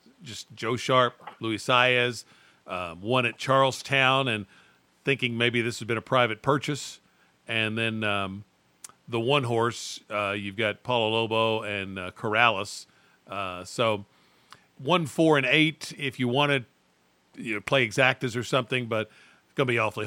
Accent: American